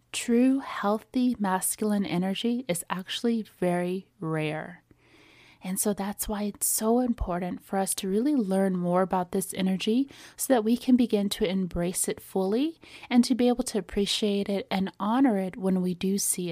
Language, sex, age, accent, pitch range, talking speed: English, female, 30-49, American, 185-220 Hz, 170 wpm